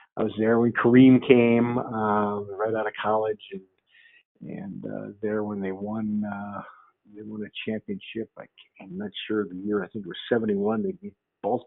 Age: 50-69